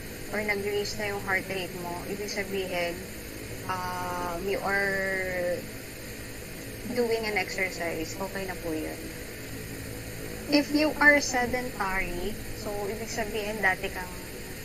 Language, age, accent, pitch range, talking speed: Filipino, 20-39, native, 185-245 Hz, 115 wpm